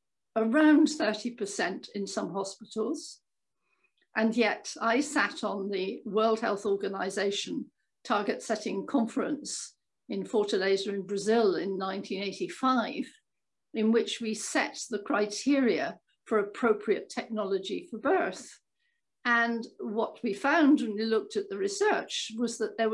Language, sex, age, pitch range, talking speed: English, female, 60-79, 210-270 Hz, 125 wpm